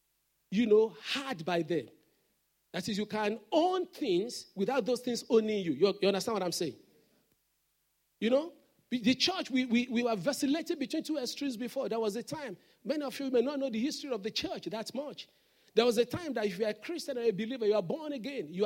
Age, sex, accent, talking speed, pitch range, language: 50-69, male, Nigerian, 220 wpm, 215-295 Hz, English